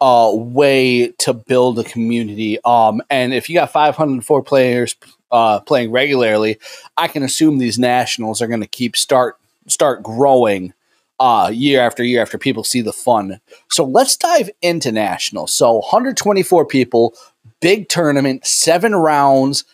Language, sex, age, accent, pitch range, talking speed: English, male, 30-49, American, 125-175 Hz, 150 wpm